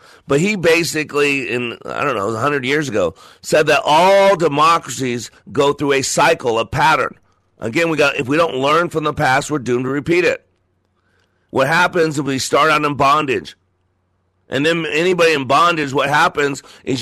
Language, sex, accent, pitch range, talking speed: English, male, American, 130-160 Hz, 180 wpm